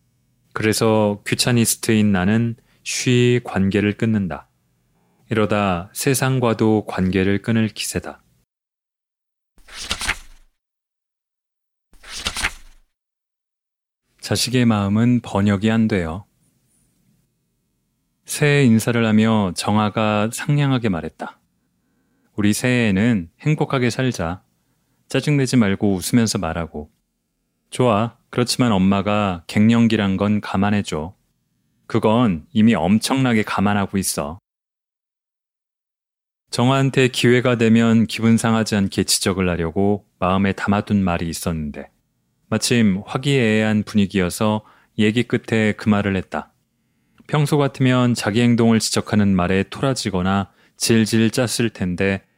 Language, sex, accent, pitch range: Korean, male, native, 100-120 Hz